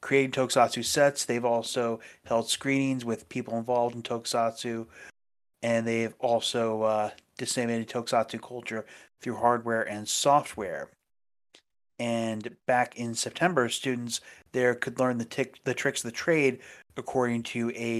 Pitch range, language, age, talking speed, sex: 110-125 Hz, English, 30-49, 135 wpm, male